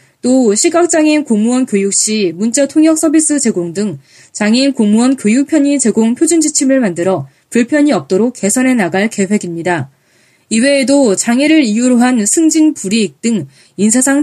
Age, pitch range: 20-39, 190-275 Hz